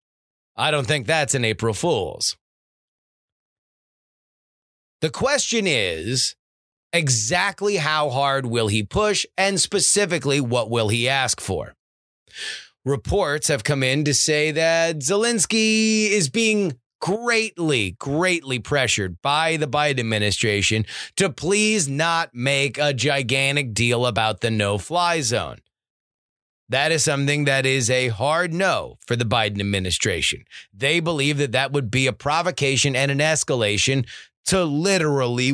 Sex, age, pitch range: male, 30-49, 120-175 Hz